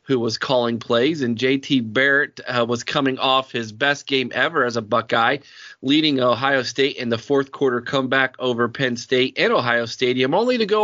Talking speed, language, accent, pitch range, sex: 195 wpm, English, American, 130-180 Hz, male